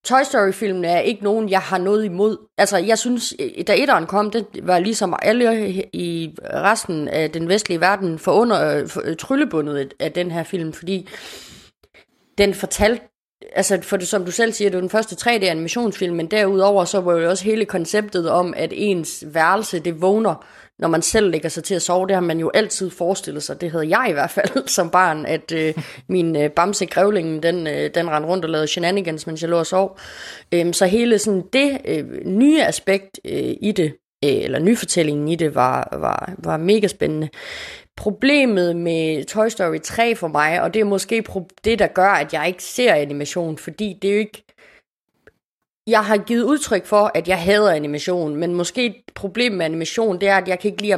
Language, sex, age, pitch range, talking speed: Danish, female, 30-49, 170-215 Hz, 200 wpm